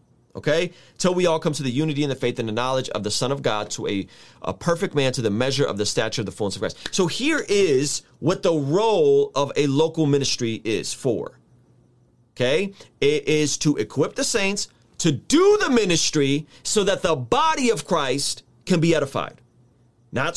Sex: male